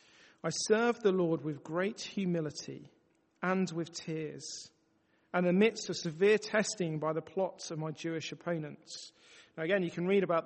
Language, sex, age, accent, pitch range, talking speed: English, male, 40-59, British, 165-205 Hz, 160 wpm